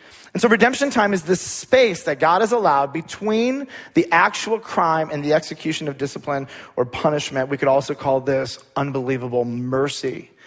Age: 30-49